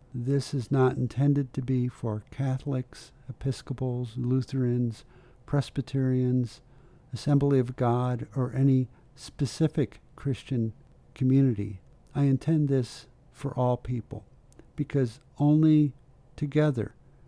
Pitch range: 115-135 Hz